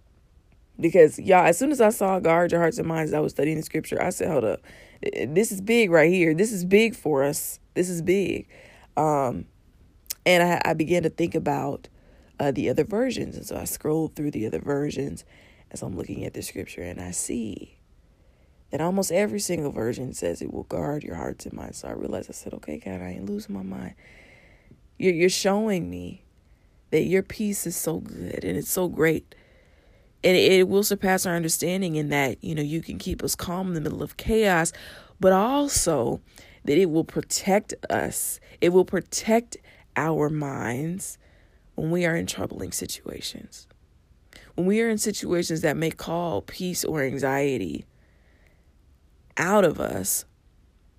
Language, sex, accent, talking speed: English, female, American, 180 wpm